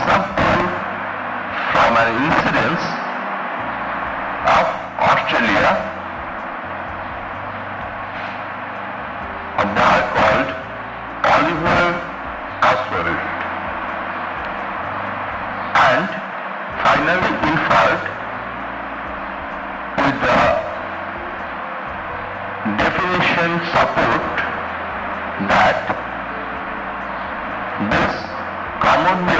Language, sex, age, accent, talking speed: Bengali, male, 60-79, native, 45 wpm